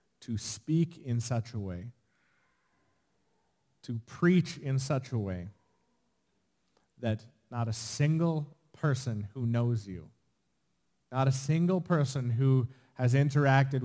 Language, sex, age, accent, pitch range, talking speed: English, male, 30-49, American, 90-130 Hz, 115 wpm